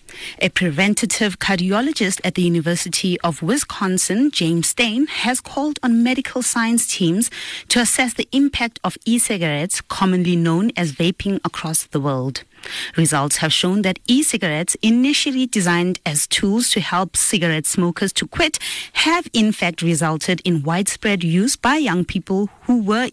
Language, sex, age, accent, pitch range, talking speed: English, female, 30-49, South African, 175-240 Hz, 145 wpm